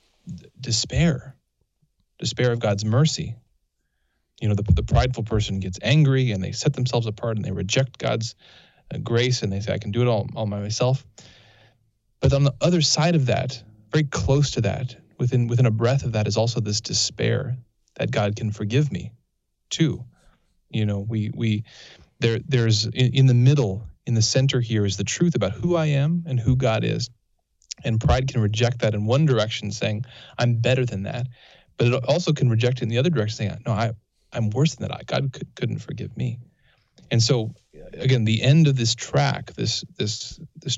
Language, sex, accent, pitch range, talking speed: English, male, American, 110-135 Hz, 195 wpm